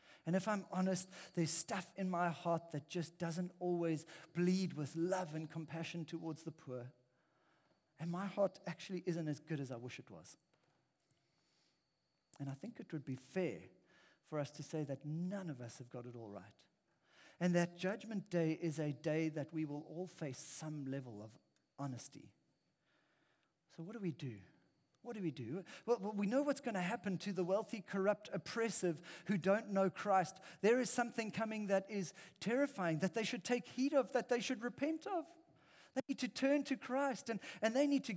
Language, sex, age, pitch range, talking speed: English, male, 50-69, 155-205 Hz, 195 wpm